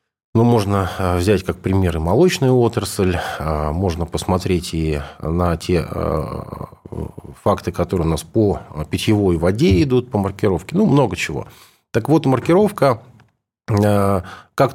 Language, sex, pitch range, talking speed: Russian, male, 90-120 Hz, 120 wpm